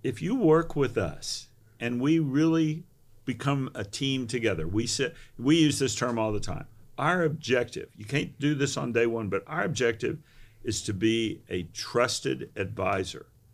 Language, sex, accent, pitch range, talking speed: English, male, American, 110-130 Hz, 175 wpm